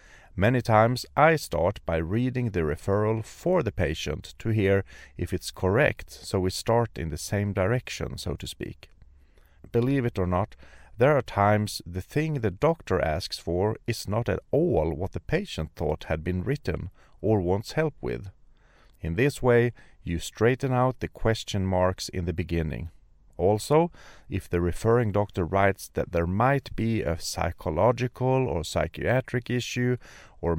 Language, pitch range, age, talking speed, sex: English, 85-120 Hz, 40-59, 160 wpm, male